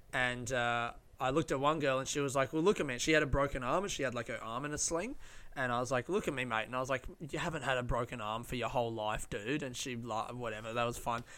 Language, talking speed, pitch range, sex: English, 310 wpm, 125-155 Hz, male